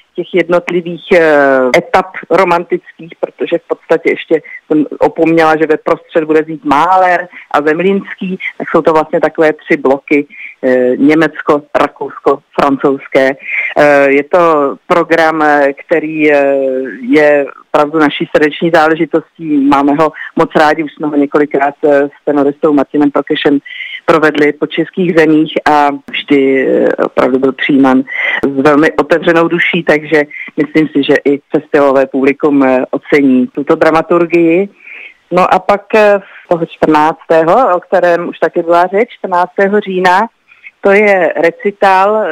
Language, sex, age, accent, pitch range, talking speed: Czech, female, 50-69, native, 150-185 Hz, 135 wpm